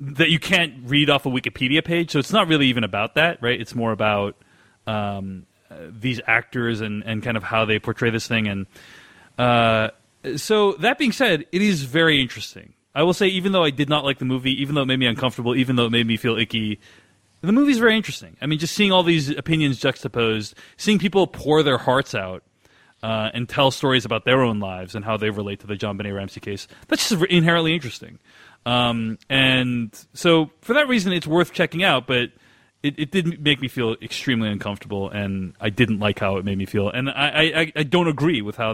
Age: 30-49